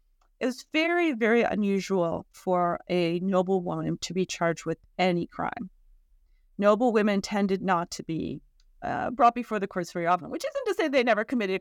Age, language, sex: 40-59, English, female